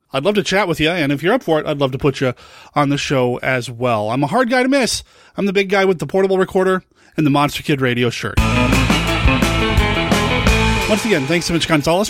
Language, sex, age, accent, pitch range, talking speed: English, male, 30-49, American, 150-195 Hz, 240 wpm